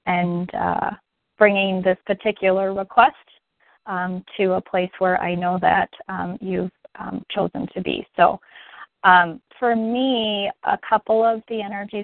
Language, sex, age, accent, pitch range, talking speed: English, female, 30-49, American, 185-215 Hz, 145 wpm